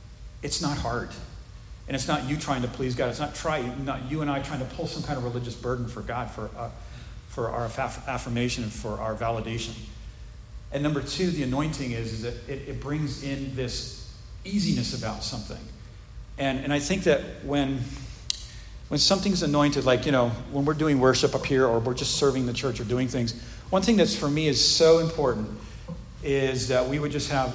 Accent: American